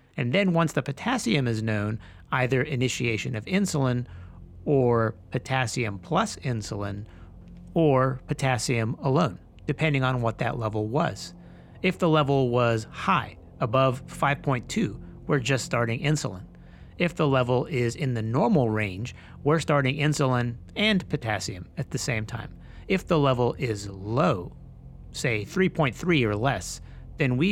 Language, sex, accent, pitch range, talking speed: English, male, American, 105-140 Hz, 135 wpm